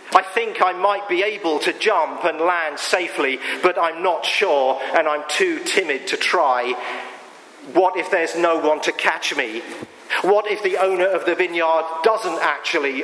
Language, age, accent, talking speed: English, 40-59, British, 175 wpm